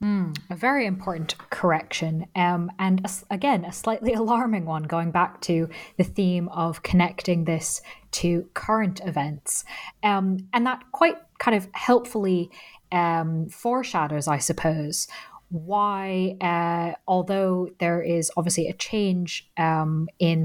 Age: 20-39